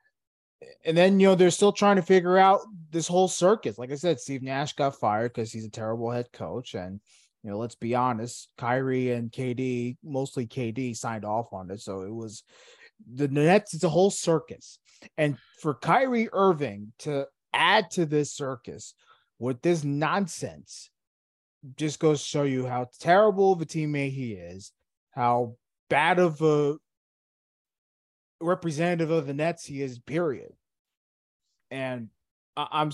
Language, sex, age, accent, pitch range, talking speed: English, male, 20-39, American, 110-155 Hz, 160 wpm